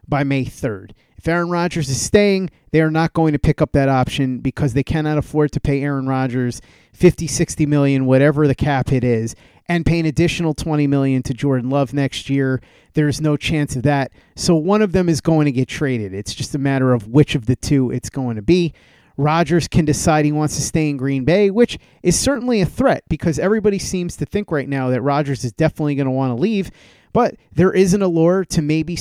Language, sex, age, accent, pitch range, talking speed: English, male, 30-49, American, 135-170 Hz, 230 wpm